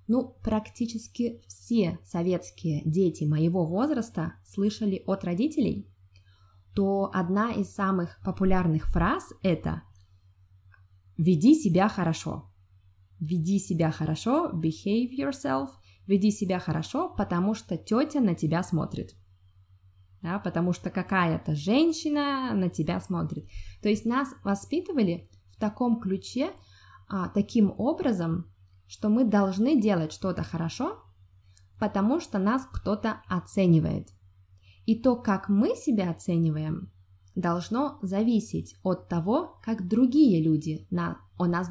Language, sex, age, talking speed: Russian, female, 20-39, 110 wpm